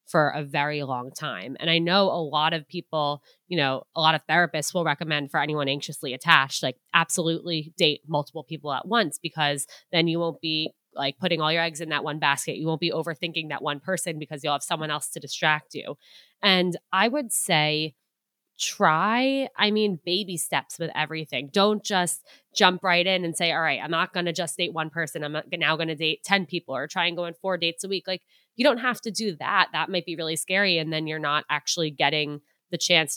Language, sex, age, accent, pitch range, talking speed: English, female, 20-39, American, 155-200 Hz, 225 wpm